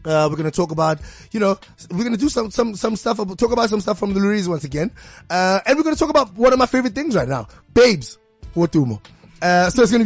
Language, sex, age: English, male, 20-39